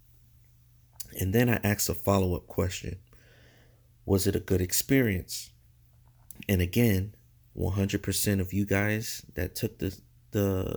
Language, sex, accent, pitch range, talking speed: English, male, American, 95-115 Hz, 125 wpm